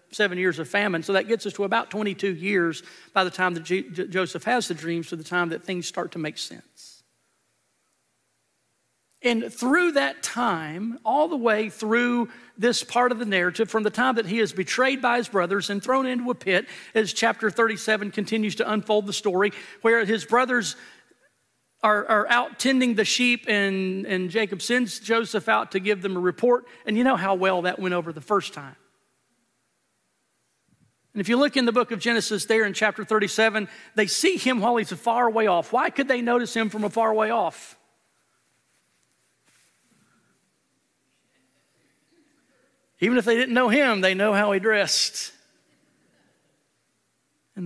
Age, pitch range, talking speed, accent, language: 40-59, 185-235 Hz, 175 wpm, American, English